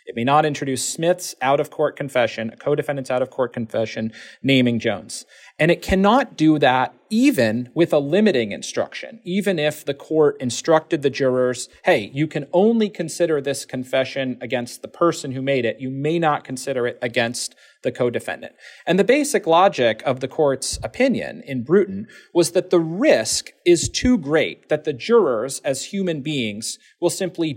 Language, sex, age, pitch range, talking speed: English, male, 40-59, 125-175 Hz, 165 wpm